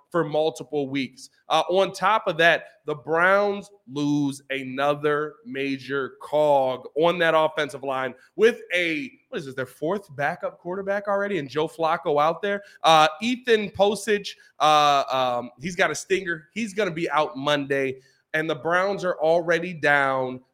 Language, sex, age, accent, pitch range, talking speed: English, male, 20-39, American, 135-170 Hz, 160 wpm